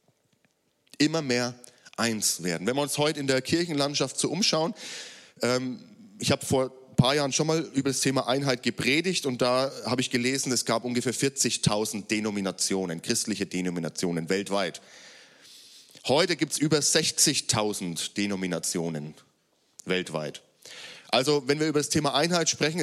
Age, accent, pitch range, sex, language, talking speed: 30-49, German, 115-145 Hz, male, German, 145 wpm